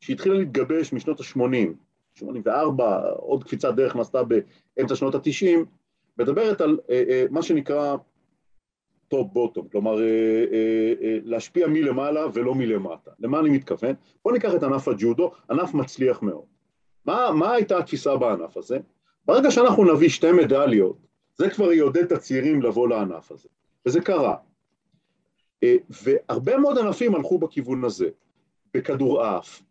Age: 40-59